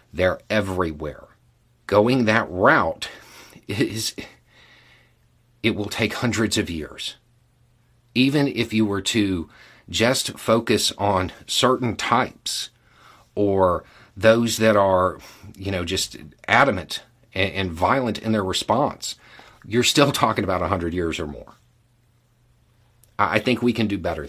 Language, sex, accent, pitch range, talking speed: English, male, American, 100-120 Hz, 125 wpm